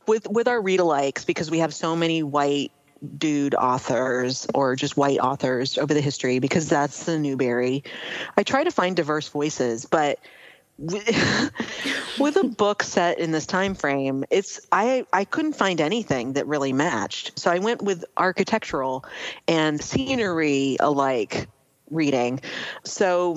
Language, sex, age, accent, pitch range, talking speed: English, female, 40-59, American, 140-185 Hz, 145 wpm